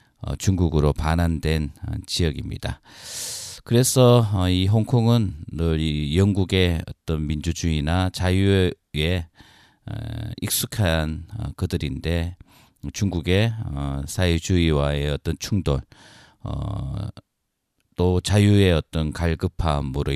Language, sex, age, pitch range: Korean, male, 40-59, 75-100 Hz